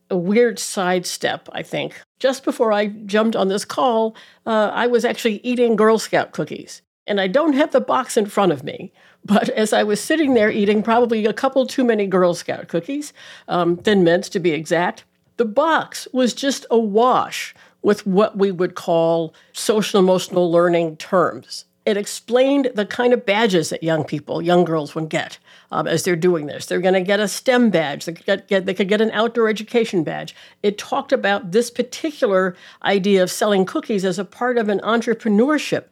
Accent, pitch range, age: American, 185-250 Hz, 50-69